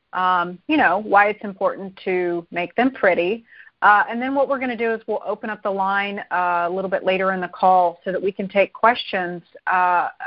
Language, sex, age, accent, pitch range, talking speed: English, female, 30-49, American, 185-220 Hz, 230 wpm